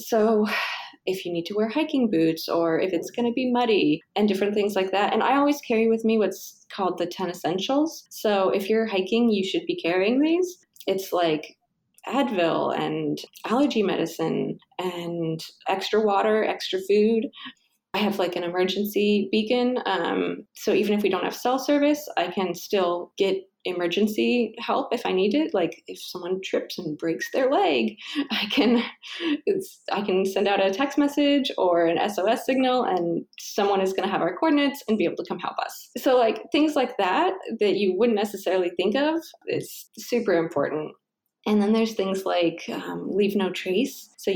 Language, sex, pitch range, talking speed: English, female, 185-245 Hz, 185 wpm